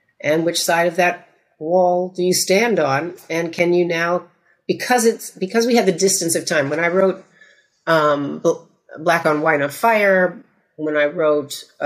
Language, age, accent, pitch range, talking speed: English, 50-69, American, 150-190 Hz, 180 wpm